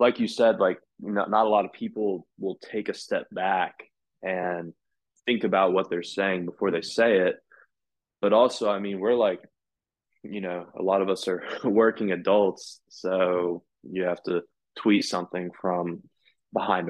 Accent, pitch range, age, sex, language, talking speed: American, 90-110 Hz, 20-39, male, English, 170 wpm